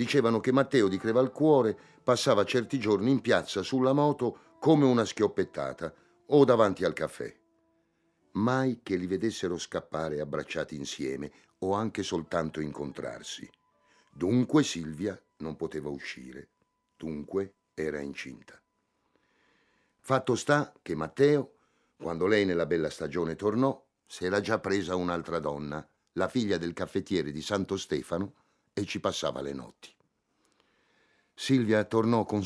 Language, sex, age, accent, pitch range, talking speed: Italian, male, 50-69, native, 85-120 Hz, 130 wpm